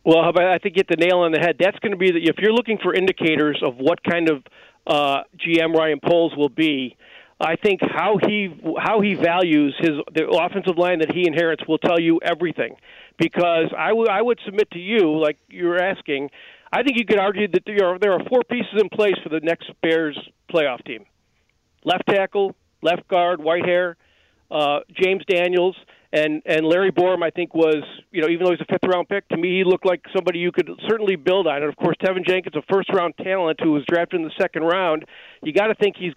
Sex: male